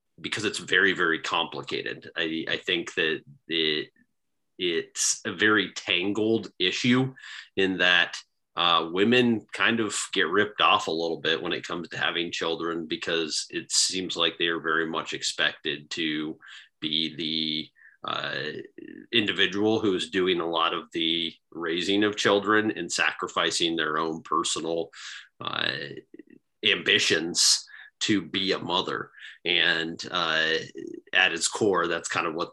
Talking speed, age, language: 140 wpm, 30-49, English